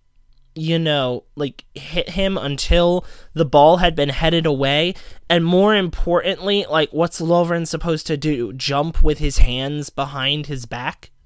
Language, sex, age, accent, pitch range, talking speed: English, male, 20-39, American, 160-215 Hz, 150 wpm